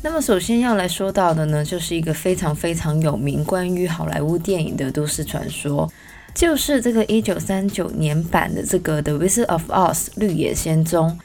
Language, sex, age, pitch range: Chinese, female, 20-39, 160-205 Hz